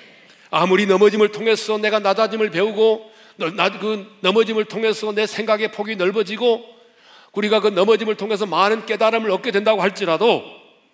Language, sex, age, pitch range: Korean, male, 40-59, 185-230 Hz